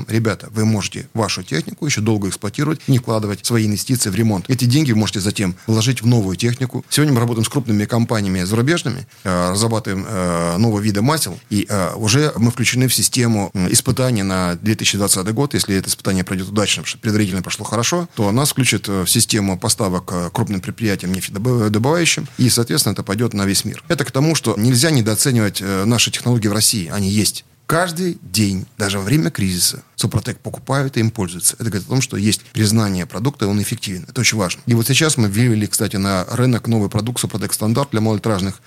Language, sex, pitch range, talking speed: Russian, male, 100-125 Hz, 190 wpm